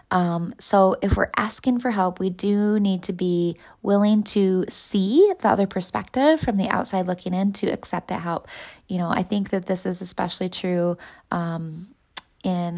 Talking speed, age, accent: 180 wpm, 20-39, American